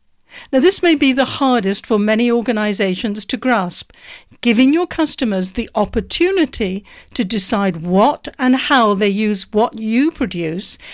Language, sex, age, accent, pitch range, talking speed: English, female, 60-79, British, 205-265 Hz, 145 wpm